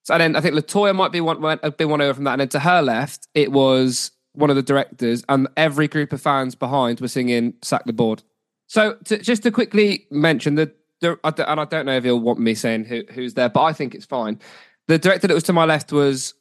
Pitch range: 130-155 Hz